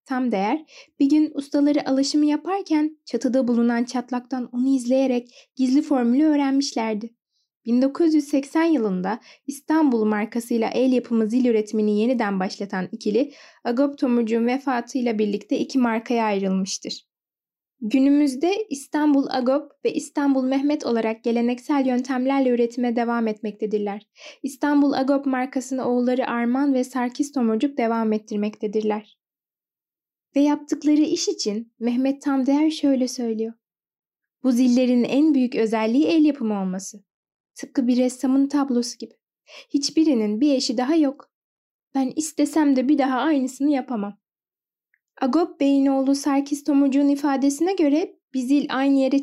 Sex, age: female, 10-29